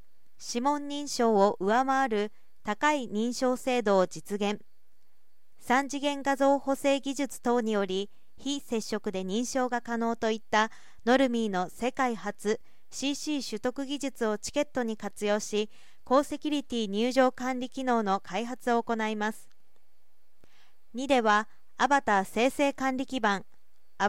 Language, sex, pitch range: Japanese, female, 210-265 Hz